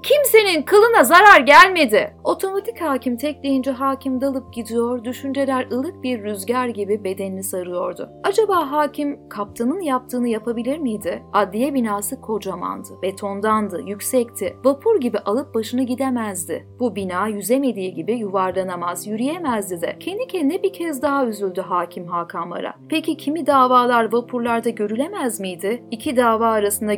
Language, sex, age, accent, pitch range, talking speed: Turkish, female, 30-49, native, 200-280 Hz, 130 wpm